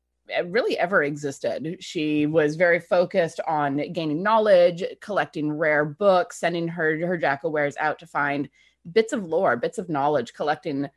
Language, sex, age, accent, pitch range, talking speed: English, female, 30-49, American, 145-185 Hz, 150 wpm